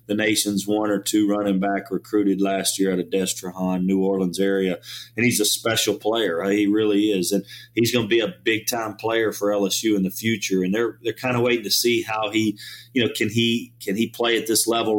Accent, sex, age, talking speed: American, male, 30-49, 235 wpm